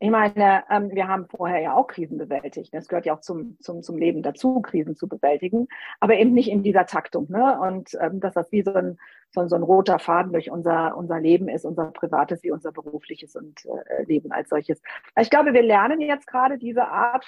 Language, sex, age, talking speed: German, female, 50-69, 210 wpm